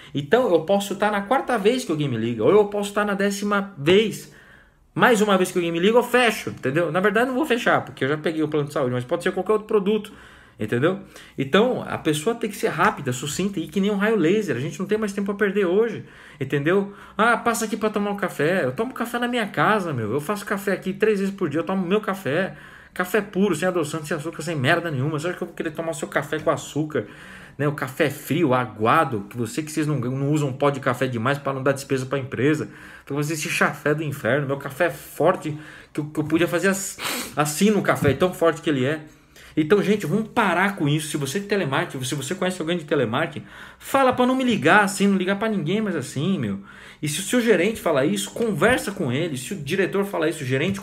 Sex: male